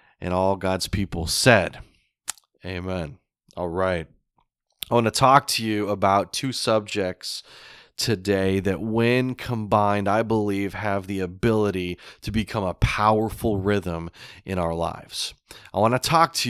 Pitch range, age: 100-125 Hz, 30-49